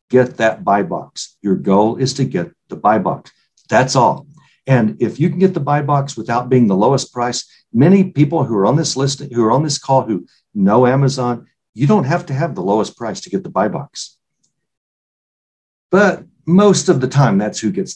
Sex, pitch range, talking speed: male, 115-170 Hz, 210 wpm